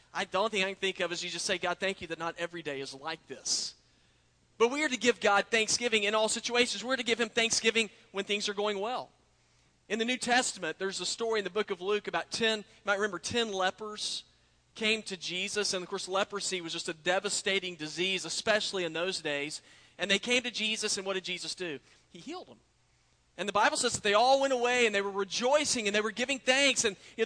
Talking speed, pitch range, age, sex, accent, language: 245 wpm, 195-245 Hz, 40-59, male, American, English